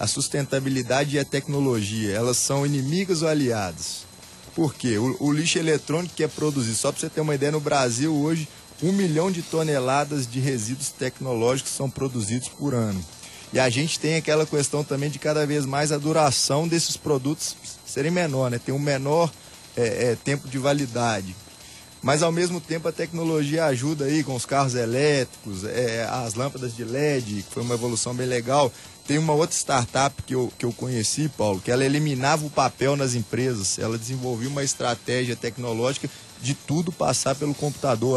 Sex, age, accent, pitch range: male, 20-39, Brazilian, 125-155 Hz